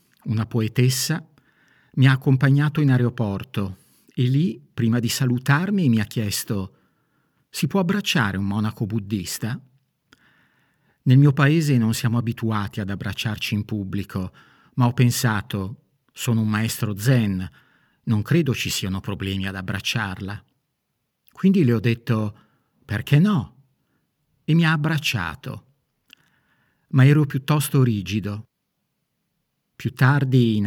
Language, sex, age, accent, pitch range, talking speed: Italian, male, 50-69, native, 105-135 Hz, 120 wpm